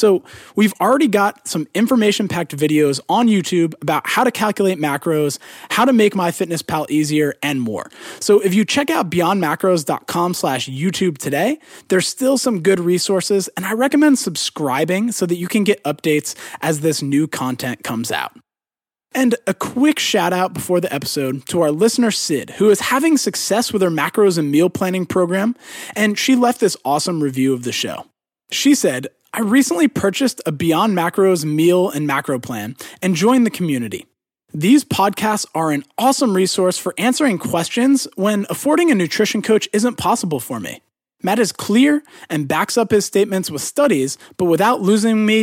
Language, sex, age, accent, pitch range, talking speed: English, male, 20-39, American, 155-225 Hz, 170 wpm